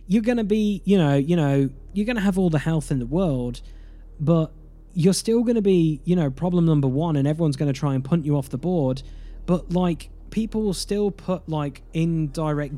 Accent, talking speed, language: British, 225 wpm, English